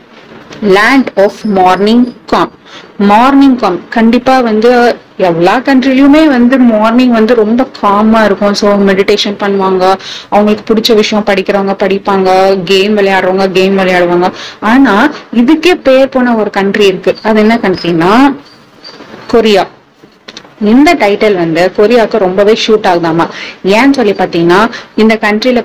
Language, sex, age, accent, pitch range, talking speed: Tamil, female, 30-49, native, 195-235 Hz, 120 wpm